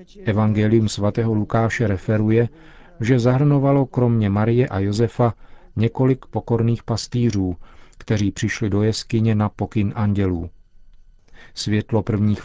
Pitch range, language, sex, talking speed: 100-120 Hz, Czech, male, 105 wpm